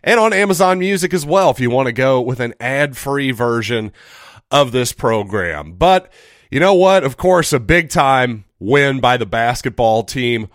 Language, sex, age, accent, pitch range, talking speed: English, male, 30-49, American, 110-150 Hz, 175 wpm